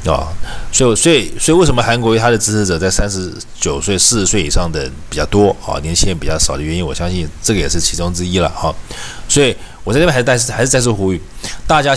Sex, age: male, 20-39